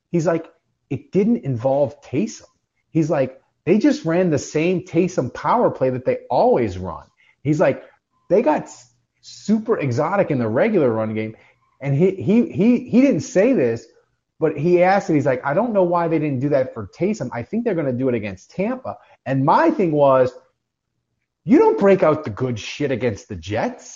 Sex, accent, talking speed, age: male, American, 195 wpm, 30-49